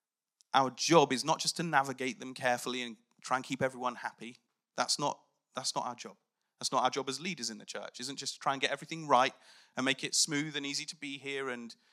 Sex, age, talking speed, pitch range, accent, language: male, 30-49, 245 wpm, 135-175 Hz, British, English